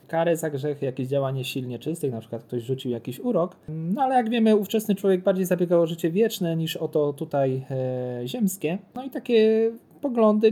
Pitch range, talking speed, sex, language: 135-175 Hz, 195 wpm, male, Polish